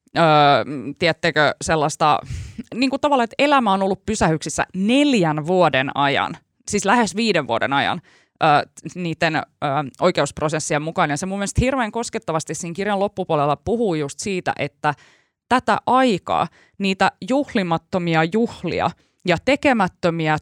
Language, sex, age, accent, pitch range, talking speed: Finnish, female, 20-39, native, 150-200 Hz, 130 wpm